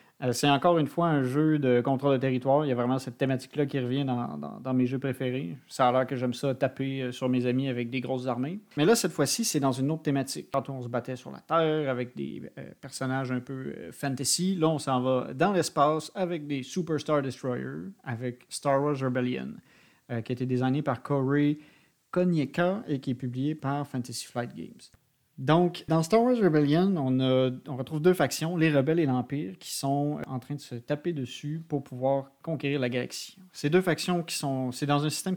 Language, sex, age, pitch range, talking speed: French, male, 40-59, 130-150 Hz, 220 wpm